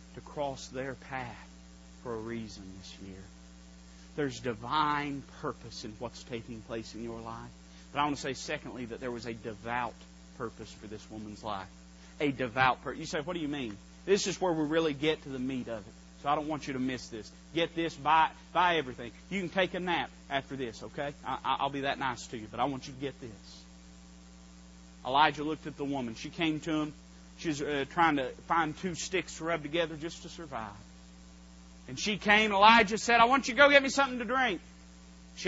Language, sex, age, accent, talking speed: English, male, 30-49, American, 215 wpm